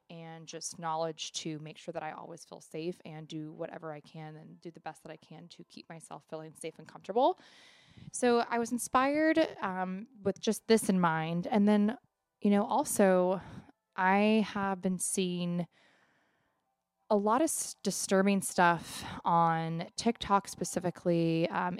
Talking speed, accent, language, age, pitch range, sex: 160 wpm, American, English, 20-39, 155-185 Hz, female